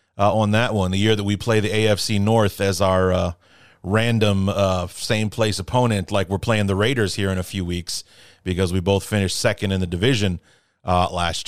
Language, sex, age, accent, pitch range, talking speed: English, male, 40-59, American, 100-130 Hz, 205 wpm